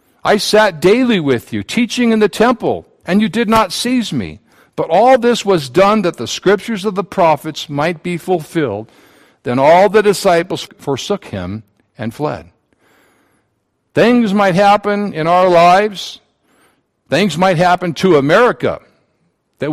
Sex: male